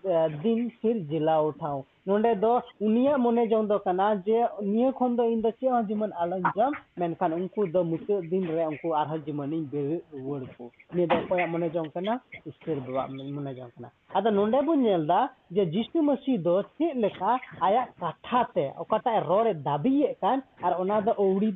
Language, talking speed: Hindi, 80 wpm